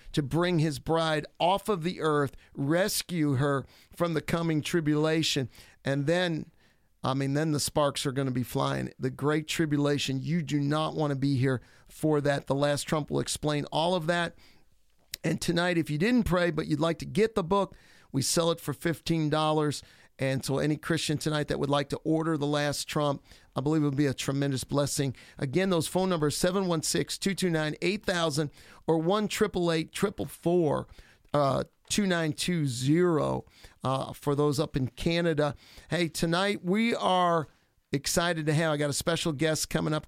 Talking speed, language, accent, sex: 165 wpm, English, American, male